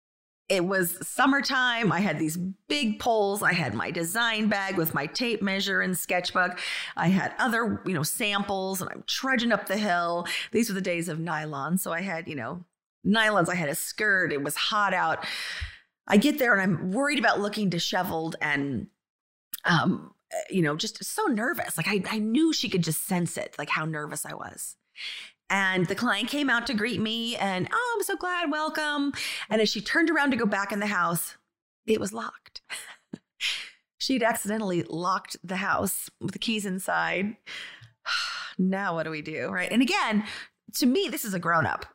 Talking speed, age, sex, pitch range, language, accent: 190 wpm, 30-49, female, 175-230 Hz, English, American